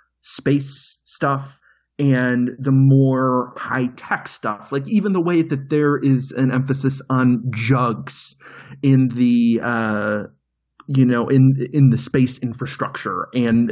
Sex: male